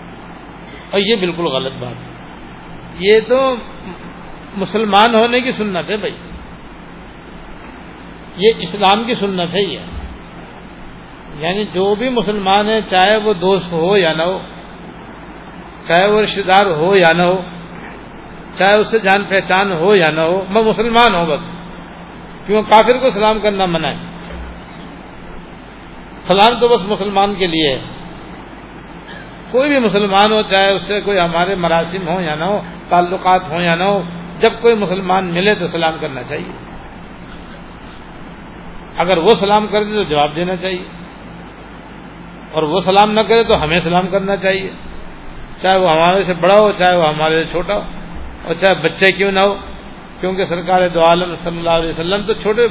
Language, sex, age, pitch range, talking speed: Urdu, male, 60-79, 175-210 Hz, 155 wpm